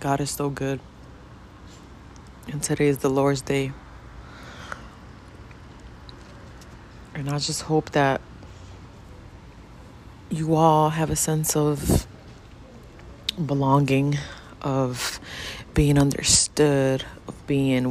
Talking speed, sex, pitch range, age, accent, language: 90 wpm, female, 115-150 Hz, 30-49, American, English